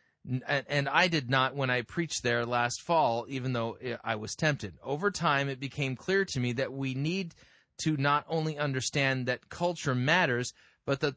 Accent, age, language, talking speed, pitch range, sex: American, 30-49, English, 185 wpm, 120-155 Hz, male